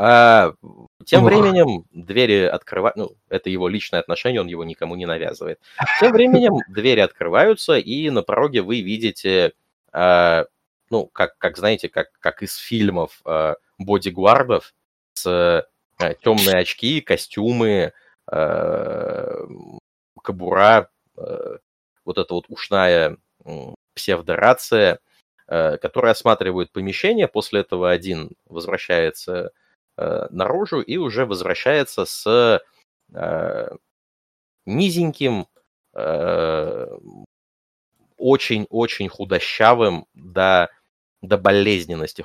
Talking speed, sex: 100 wpm, male